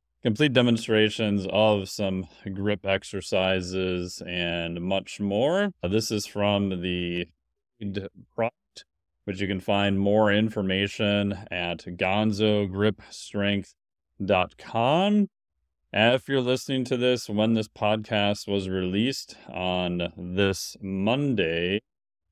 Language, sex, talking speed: English, male, 95 wpm